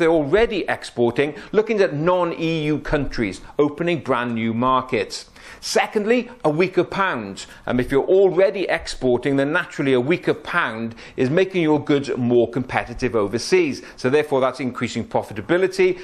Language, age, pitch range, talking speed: English, 40-59, 125-170 Hz, 140 wpm